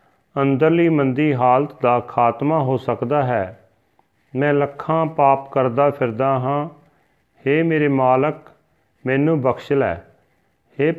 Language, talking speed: Punjabi, 115 wpm